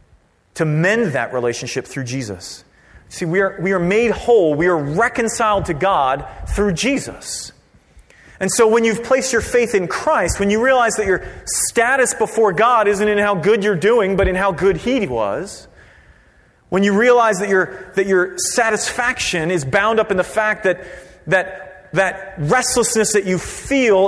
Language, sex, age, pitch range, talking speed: English, male, 30-49, 165-220 Hz, 170 wpm